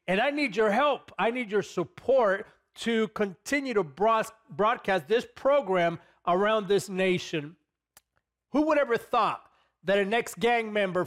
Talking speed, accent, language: 140 wpm, American, English